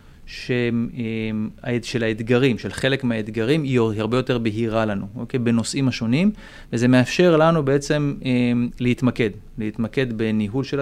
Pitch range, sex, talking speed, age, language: 115-140 Hz, male, 130 wpm, 30-49, Hebrew